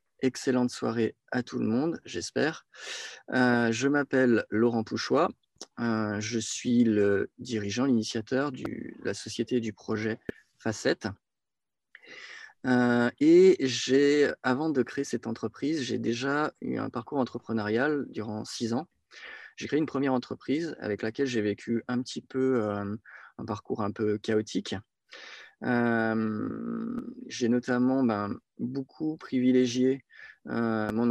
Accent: French